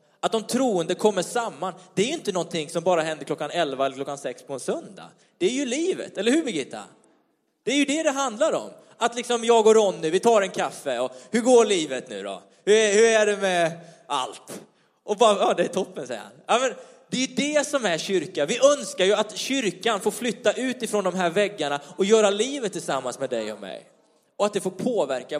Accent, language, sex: native, Swedish, male